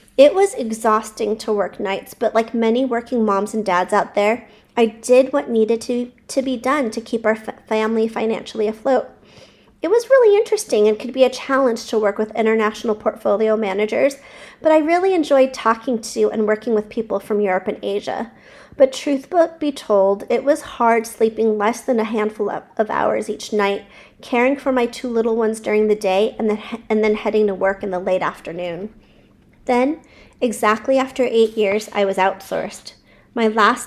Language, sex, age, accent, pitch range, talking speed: English, female, 40-59, American, 210-245 Hz, 185 wpm